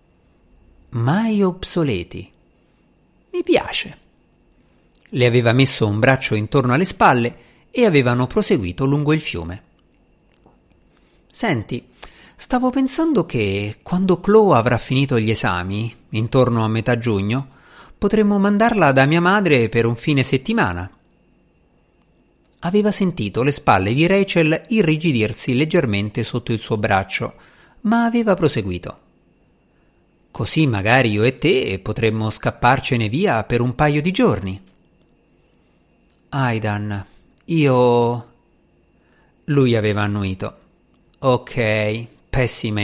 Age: 50-69